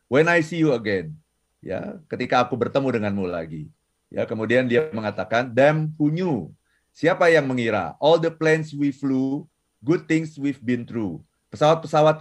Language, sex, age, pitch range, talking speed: Indonesian, male, 30-49, 120-150 Hz, 155 wpm